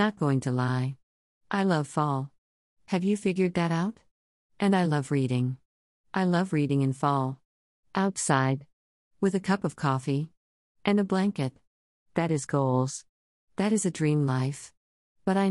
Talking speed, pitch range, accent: 155 wpm, 130-170 Hz, American